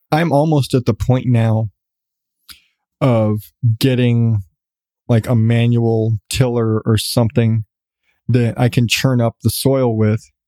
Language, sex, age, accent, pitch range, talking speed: English, male, 20-39, American, 115-130 Hz, 125 wpm